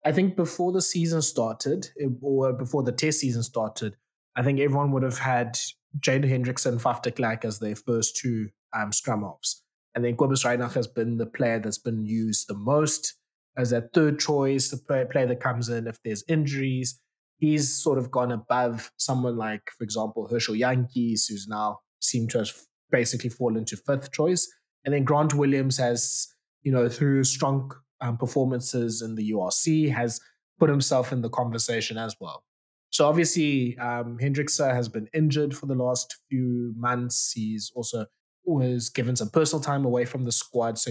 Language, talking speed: English, 175 wpm